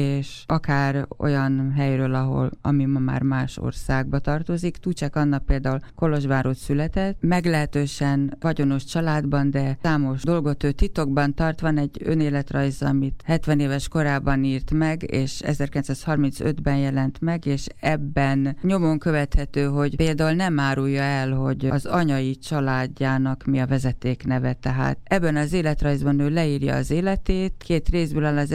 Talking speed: 135 wpm